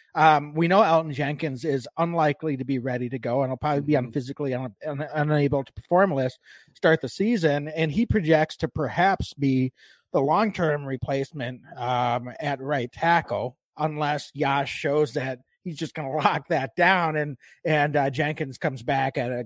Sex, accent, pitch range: male, American, 135-170 Hz